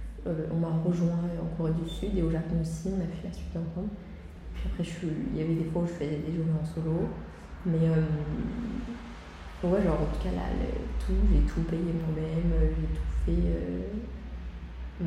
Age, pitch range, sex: 20-39, 155-185 Hz, female